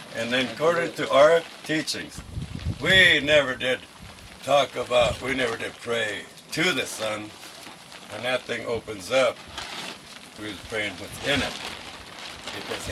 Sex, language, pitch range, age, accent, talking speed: male, English, 100-130 Hz, 60-79, American, 140 wpm